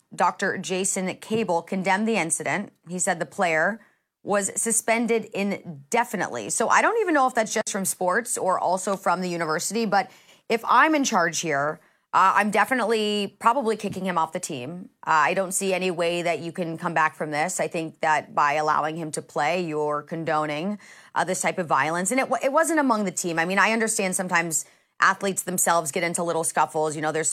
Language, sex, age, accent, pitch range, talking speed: English, female, 30-49, American, 165-205 Hz, 205 wpm